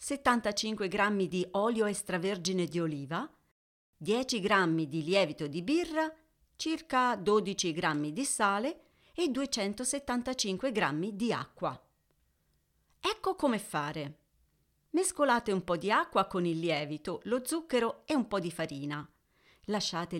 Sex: female